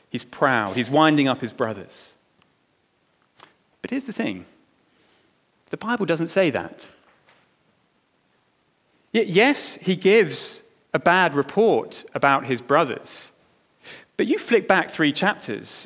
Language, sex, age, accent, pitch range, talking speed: English, male, 30-49, British, 160-235 Hz, 115 wpm